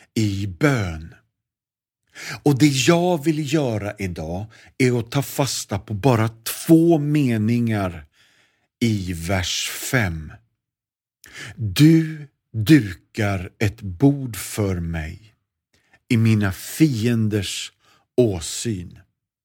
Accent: native